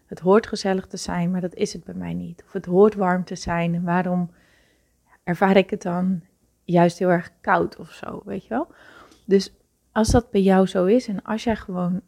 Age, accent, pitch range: 30-49, Dutch, 175-205 Hz